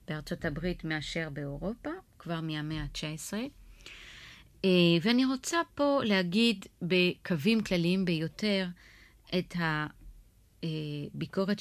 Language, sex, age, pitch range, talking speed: Hebrew, female, 30-49, 155-195 Hz, 85 wpm